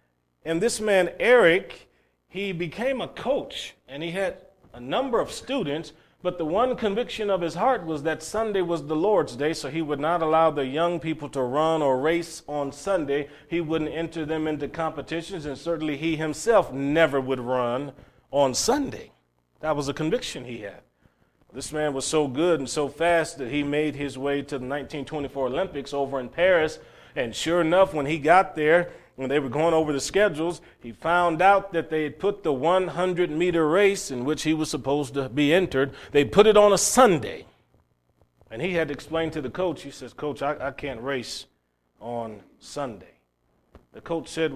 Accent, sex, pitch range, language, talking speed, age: American, male, 140-165 Hz, English, 190 wpm, 40-59